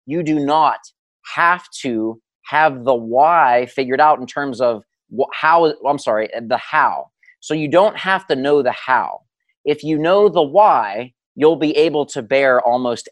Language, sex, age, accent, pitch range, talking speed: English, male, 30-49, American, 130-170 Hz, 170 wpm